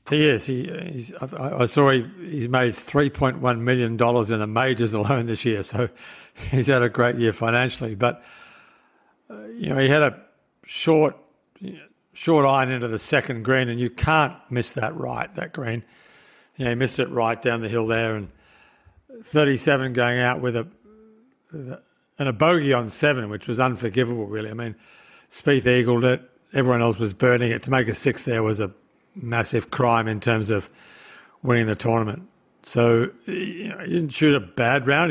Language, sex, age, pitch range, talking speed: English, male, 60-79, 115-140 Hz, 180 wpm